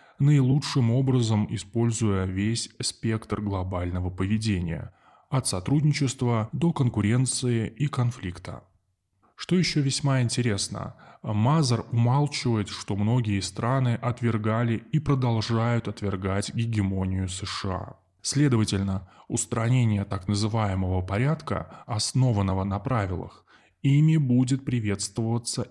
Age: 10-29